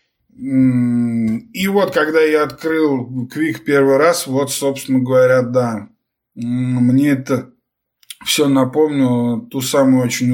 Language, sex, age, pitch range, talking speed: Russian, male, 20-39, 125-145 Hz, 110 wpm